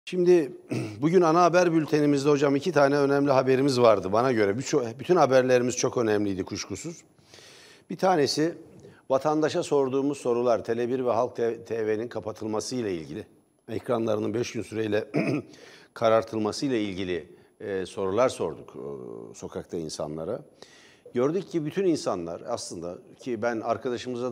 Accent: native